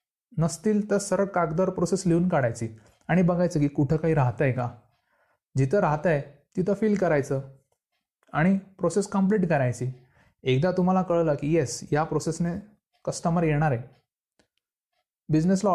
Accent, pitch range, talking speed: native, 135-180 Hz, 135 wpm